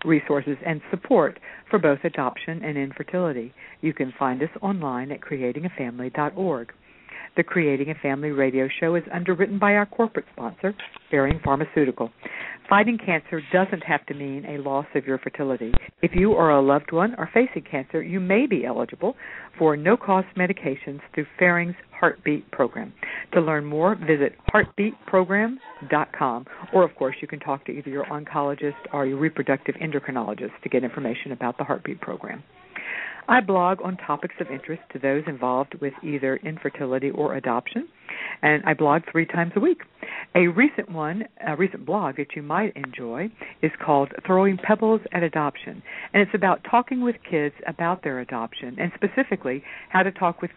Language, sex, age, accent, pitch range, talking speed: English, female, 60-79, American, 140-190 Hz, 165 wpm